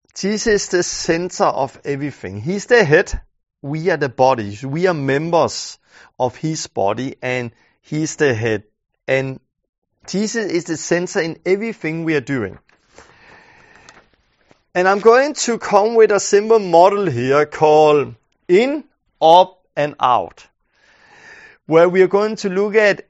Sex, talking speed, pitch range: male, 145 wpm, 140-200 Hz